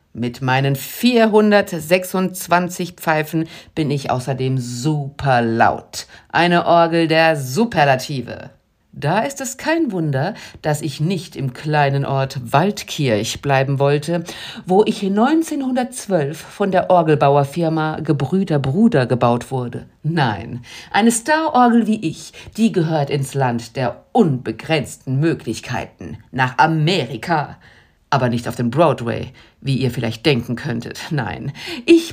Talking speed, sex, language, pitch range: 120 wpm, female, German, 130-215 Hz